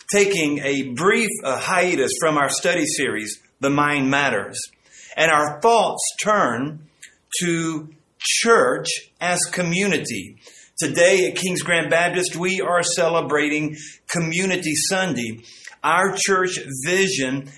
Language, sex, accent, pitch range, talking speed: English, male, American, 150-190 Hz, 115 wpm